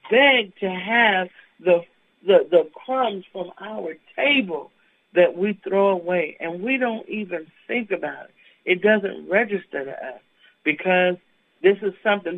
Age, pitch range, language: 60-79, 150-190 Hz, English